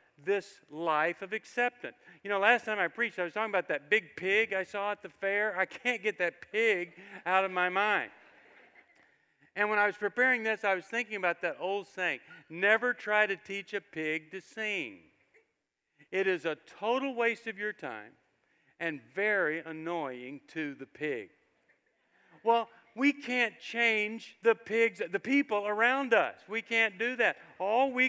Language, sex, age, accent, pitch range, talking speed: English, male, 50-69, American, 170-225 Hz, 175 wpm